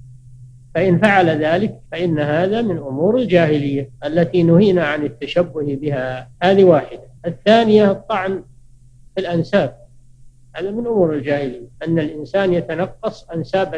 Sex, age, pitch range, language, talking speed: male, 60-79, 140-185 Hz, Arabic, 120 wpm